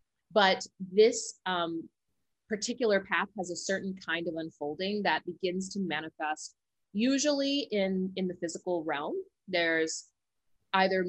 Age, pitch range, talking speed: 30-49, 170-210 Hz, 125 wpm